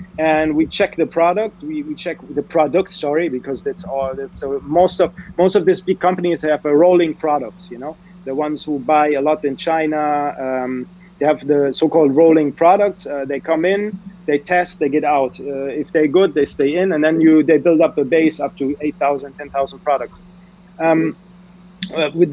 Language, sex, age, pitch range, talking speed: English, male, 30-49, 145-180 Hz, 210 wpm